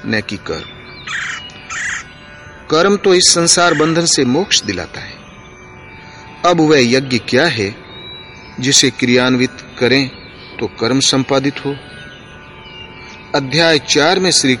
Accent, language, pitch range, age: native, Hindi, 110-150 Hz, 40-59